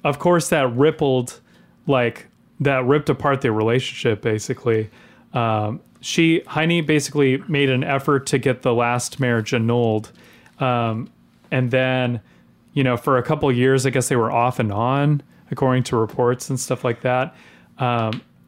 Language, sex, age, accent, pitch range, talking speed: English, male, 30-49, American, 120-145 Hz, 155 wpm